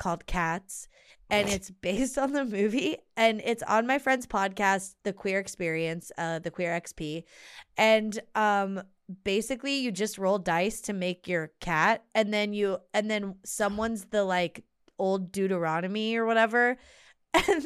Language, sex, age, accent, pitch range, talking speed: English, female, 20-39, American, 185-250 Hz, 155 wpm